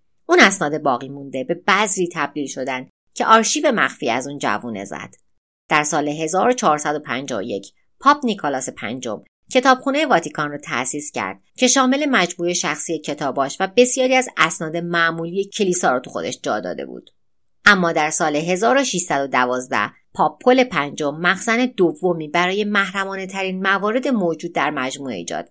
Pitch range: 145-205 Hz